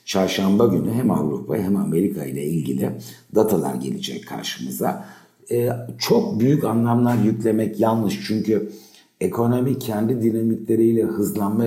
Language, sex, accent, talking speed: Turkish, male, native, 115 wpm